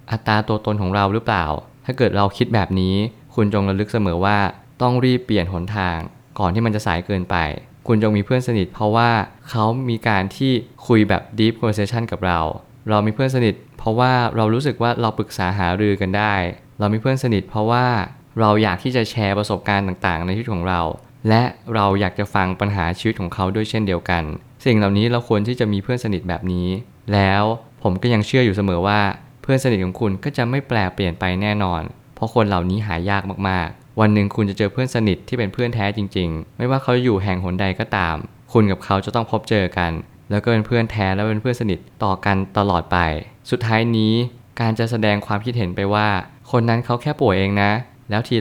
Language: Thai